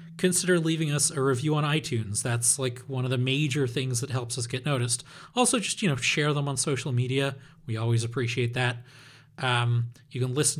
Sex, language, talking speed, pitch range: male, English, 205 wpm, 130-165 Hz